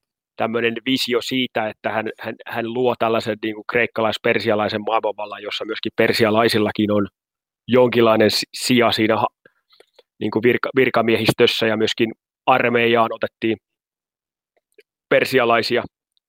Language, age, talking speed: Finnish, 30-49, 105 wpm